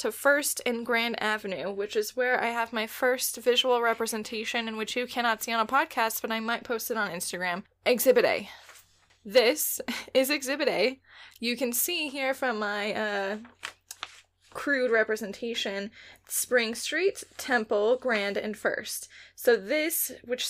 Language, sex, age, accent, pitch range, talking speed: English, female, 10-29, American, 215-250 Hz, 155 wpm